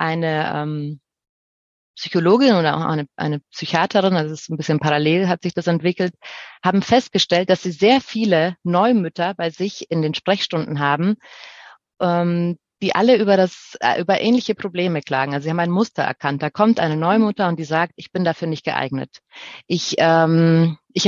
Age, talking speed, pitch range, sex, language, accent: 30-49, 175 wpm, 150-185 Hz, female, German, German